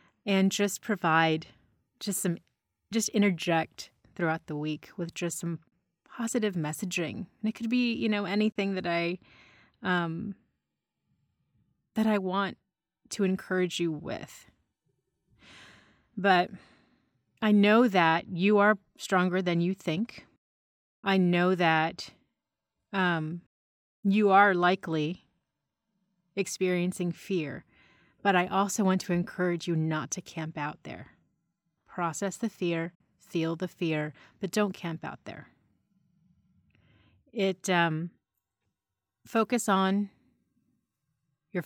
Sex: female